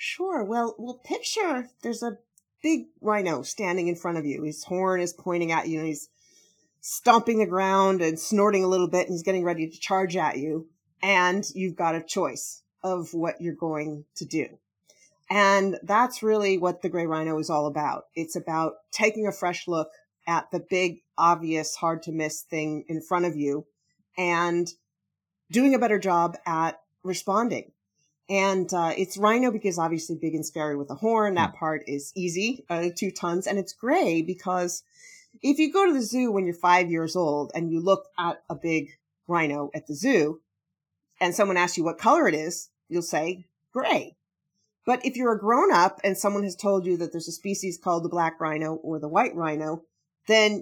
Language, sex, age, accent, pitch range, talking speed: English, female, 40-59, American, 160-205 Hz, 190 wpm